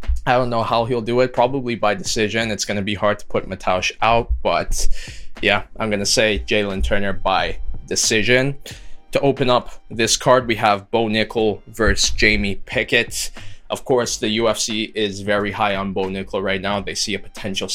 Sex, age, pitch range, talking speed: male, 20-39, 95-115 Hz, 195 wpm